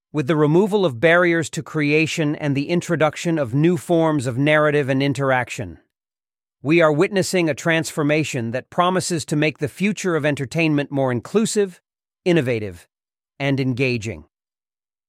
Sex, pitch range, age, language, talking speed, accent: male, 140-175 Hz, 40-59, Italian, 140 wpm, American